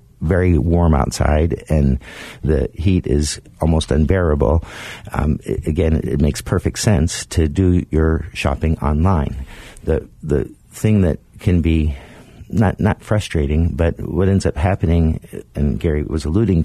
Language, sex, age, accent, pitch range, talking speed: English, male, 50-69, American, 75-95 Hz, 140 wpm